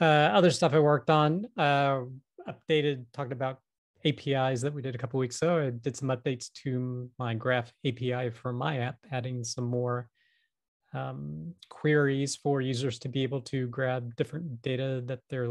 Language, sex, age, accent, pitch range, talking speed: English, male, 30-49, American, 125-150 Hz, 180 wpm